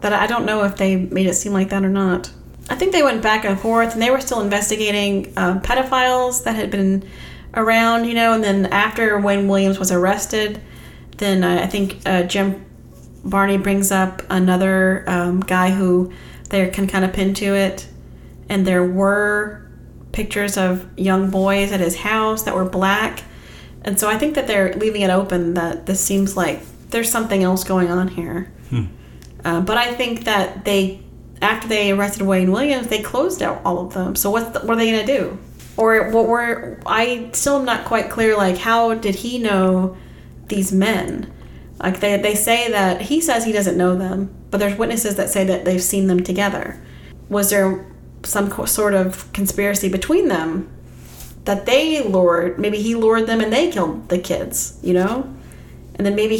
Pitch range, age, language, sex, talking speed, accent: 190-225 Hz, 30-49, English, female, 190 wpm, American